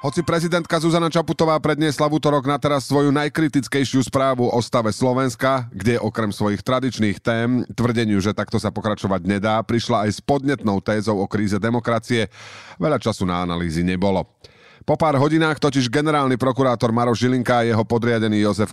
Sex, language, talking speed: male, Slovak, 160 wpm